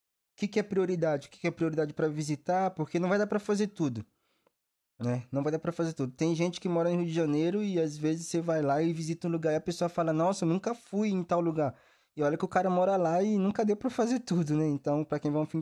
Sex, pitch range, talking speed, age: male, 145-190 Hz, 290 wpm, 20-39